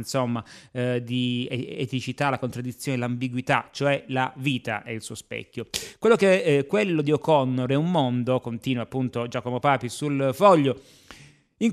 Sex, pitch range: male, 125-145 Hz